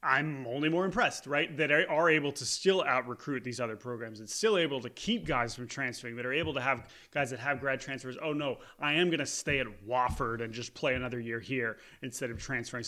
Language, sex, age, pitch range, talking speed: English, male, 30-49, 120-155 Hz, 240 wpm